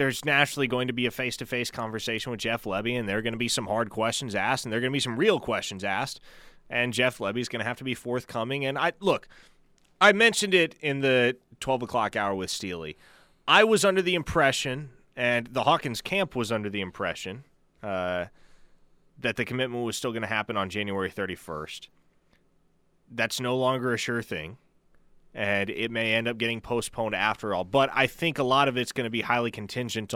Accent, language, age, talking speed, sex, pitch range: American, English, 30-49, 210 wpm, male, 105-130 Hz